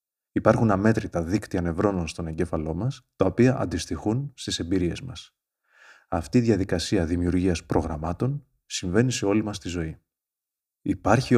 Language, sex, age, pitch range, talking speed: Greek, male, 30-49, 90-120 Hz, 130 wpm